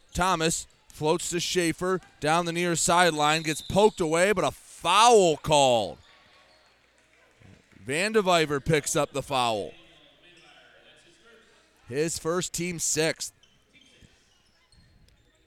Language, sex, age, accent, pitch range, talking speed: English, male, 30-49, American, 150-180 Hz, 95 wpm